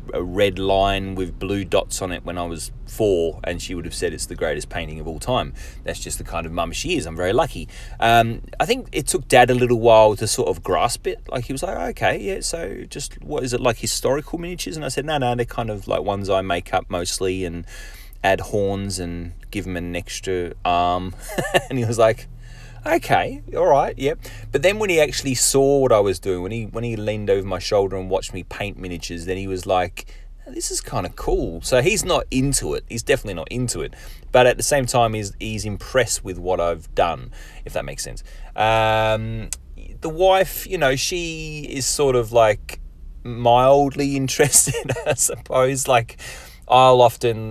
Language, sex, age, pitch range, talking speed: English, male, 30-49, 95-125 Hz, 215 wpm